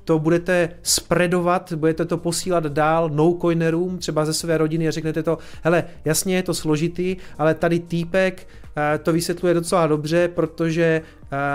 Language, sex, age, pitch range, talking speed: Czech, male, 30-49, 155-180 Hz, 150 wpm